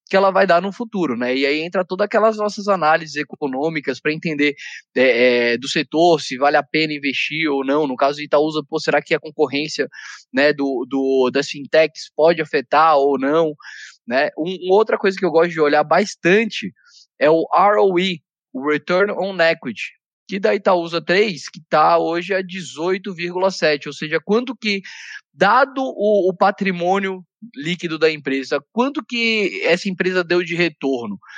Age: 20-39